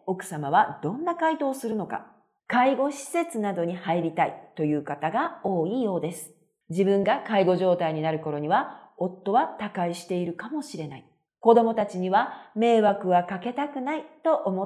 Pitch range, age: 165-230 Hz, 40-59